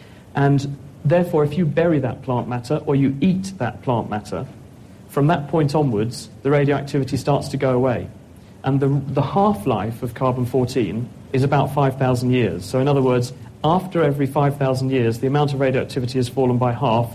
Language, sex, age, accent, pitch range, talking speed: English, male, 40-59, British, 120-145 Hz, 175 wpm